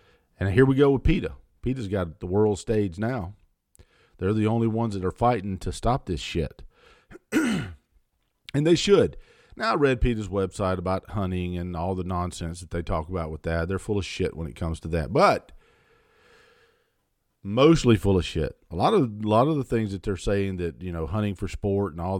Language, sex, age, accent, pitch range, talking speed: English, male, 50-69, American, 90-115 Hz, 200 wpm